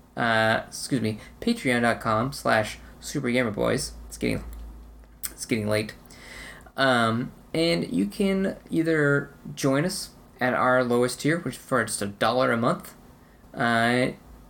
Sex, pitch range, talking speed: male, 115-140 Hz, 115 wpm